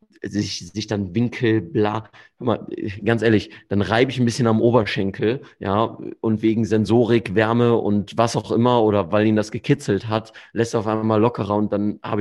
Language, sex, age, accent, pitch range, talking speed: German, male, 30-49, German, 95-110 Hz, 175 wpm